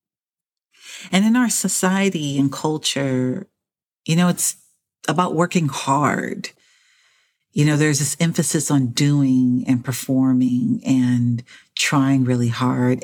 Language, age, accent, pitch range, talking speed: English, 40-59, American, 140-185 Hz, 115 wpm